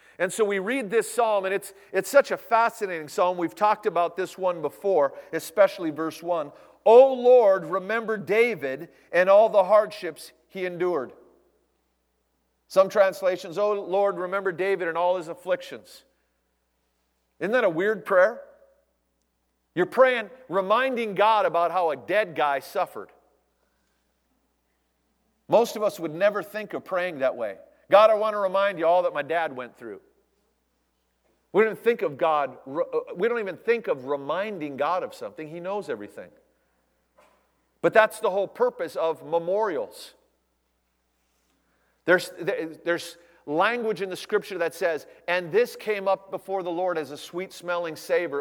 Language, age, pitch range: English, 40-59, 155-210 Hz